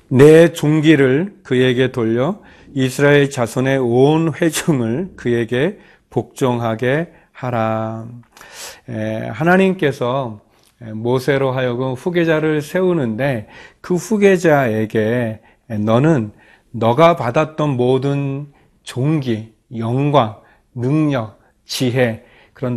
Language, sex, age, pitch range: Korean, male, 40-59, 115-150 Hz